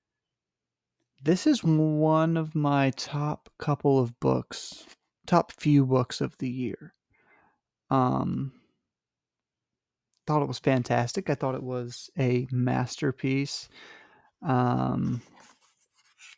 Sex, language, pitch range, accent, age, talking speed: male, English, 125-145 Hz, American, 30-49, 105 wpm